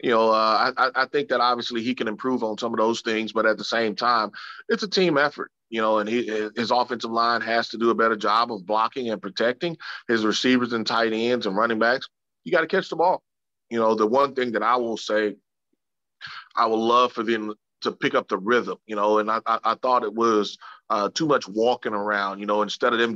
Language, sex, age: English, male, 30-49